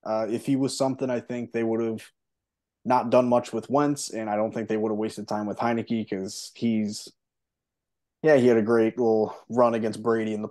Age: 20-39